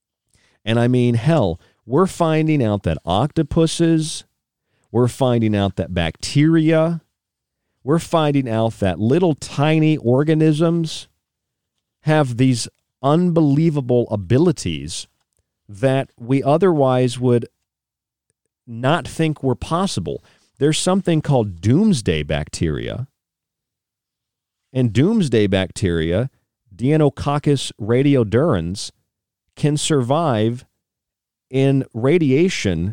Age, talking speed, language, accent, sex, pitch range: 40-59, 85 wpm, English, American, male, 100-135 Hz